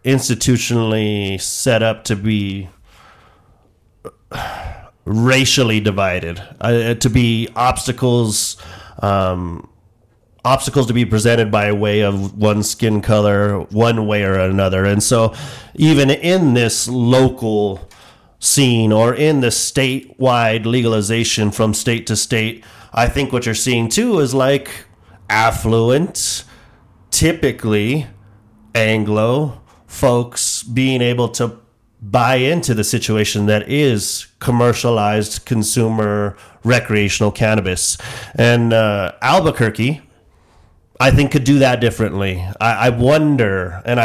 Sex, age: male, 30-49